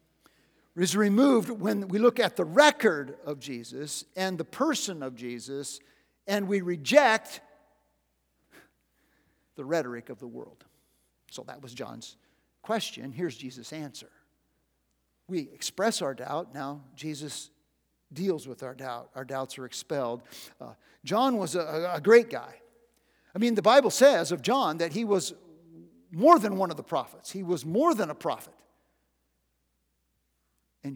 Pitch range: 135-215 Hz